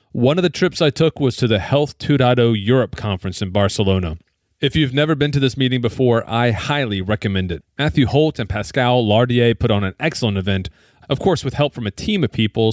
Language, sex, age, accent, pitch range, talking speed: English, male, 40-59, American, 100-130 Hz, 215 wpm